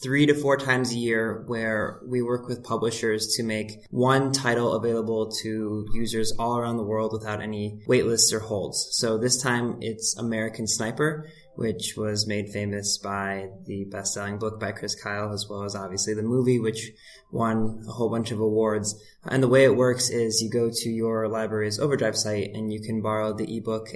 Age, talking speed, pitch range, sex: 20-39, 195 wpm, 105-115 Hz, male